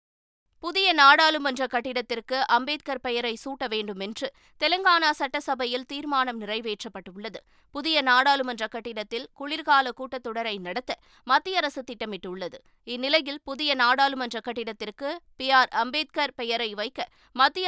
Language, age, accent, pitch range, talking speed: Tamil, 20-39, native, 225-295 Hz, 100 wpm